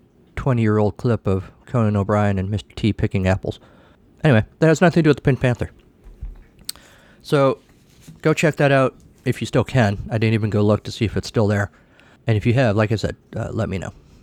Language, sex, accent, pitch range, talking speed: English, male, American, 100-125 Hz, 215 wpm